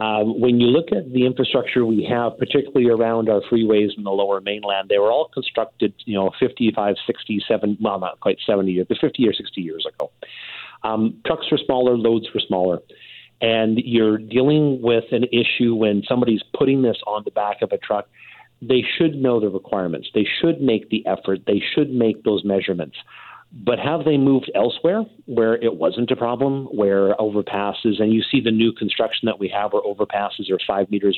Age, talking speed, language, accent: 40-59, 190 wpm, English, American